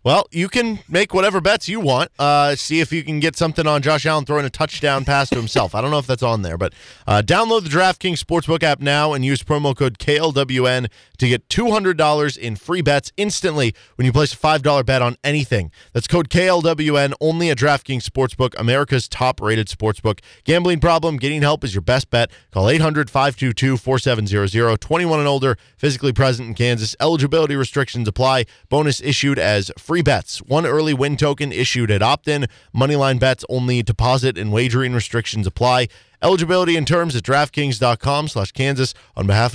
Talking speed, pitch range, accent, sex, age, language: 180 wpm, 115-155 Hz, American, male, 20-39, English